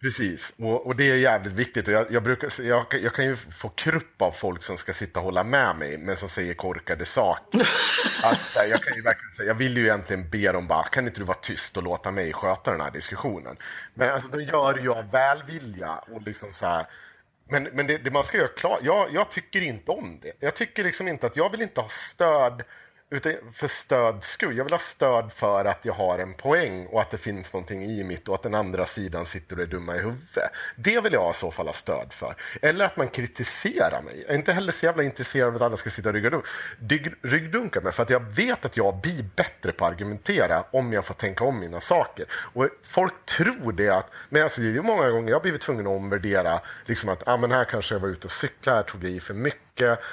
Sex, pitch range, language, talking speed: male, 100-130 Hz, Swedish, 245 wpm